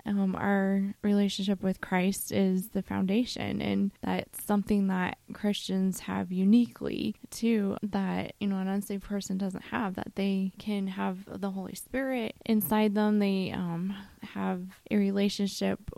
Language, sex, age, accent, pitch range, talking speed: English, female, 20-39, American, 190-205 Hz, 145 wpm